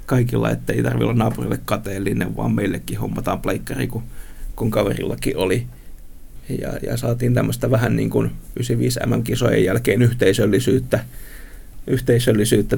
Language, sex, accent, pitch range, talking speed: Finnish, male, native, 85-125 Hz, 130 wpm